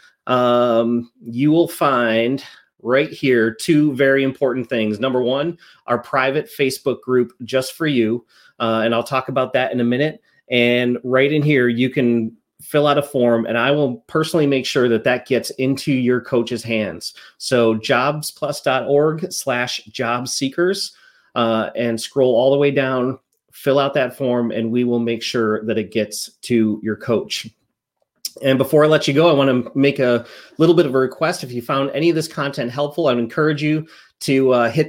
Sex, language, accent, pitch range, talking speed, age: male, English, American, 120-145 Hz, 185 wpm, 30-49